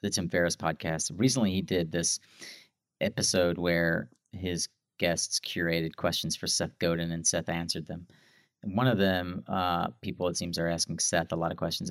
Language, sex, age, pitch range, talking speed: English, male, 30-49, 85-95 Hz, 180 wpm